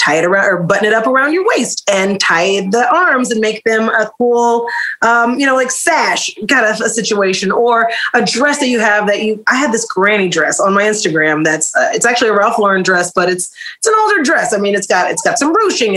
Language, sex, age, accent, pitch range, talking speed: English, female, 30-49, American, 195-260 Hz, 250 wpm